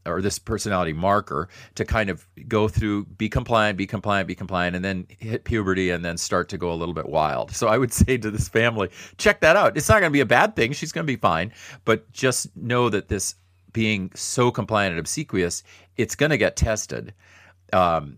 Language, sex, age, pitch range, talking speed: English, male, 40-59, 90-110 Hz, 220 wpm